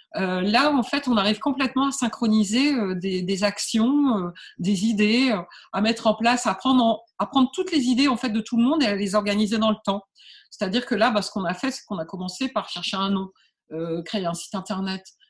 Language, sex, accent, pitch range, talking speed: French, female, French, 200-245 Hz, 245 wpm